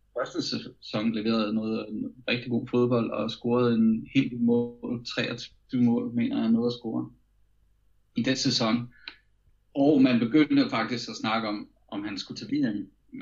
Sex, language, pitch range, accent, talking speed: male, Danish, 105-125 Hz, native, 165 wpm